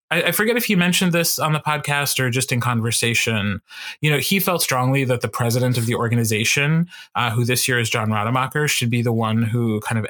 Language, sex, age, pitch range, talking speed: English, male, 30-49, 115-140 Hz, 225 wpm